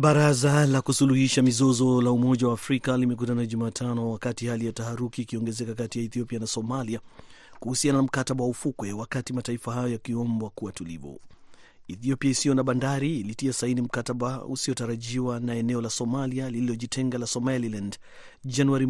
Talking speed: 150 wpm